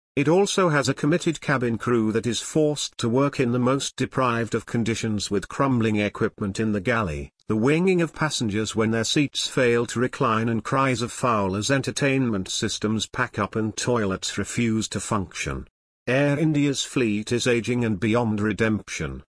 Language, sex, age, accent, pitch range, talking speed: English, male, 50-69, British, 110-140 Hz, 175 wpm